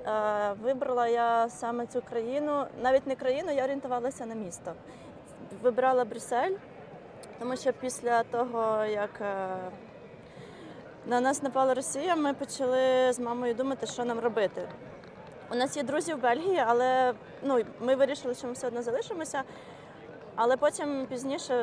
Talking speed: 135 wpm